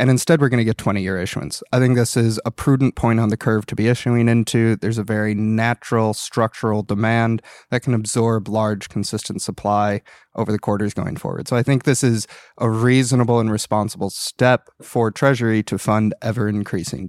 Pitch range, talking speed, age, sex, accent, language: 105-120 Hz, 190 wpm, 20-39, male, American, English